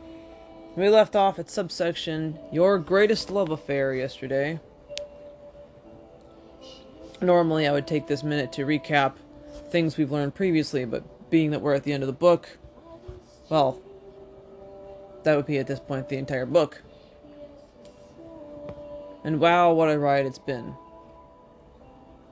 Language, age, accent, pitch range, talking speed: English, 20-39, American, 135-180 Hz, 130 wpm